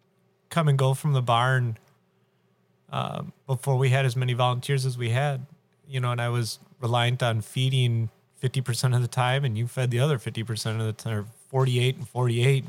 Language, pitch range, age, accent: English, 120-140 Hz, 30-49, American